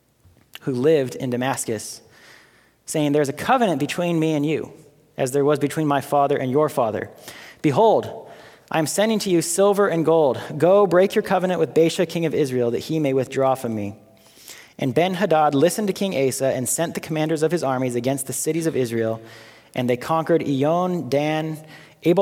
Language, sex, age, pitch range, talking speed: English, male, 30-49, 125-165 Hz, 190 wpm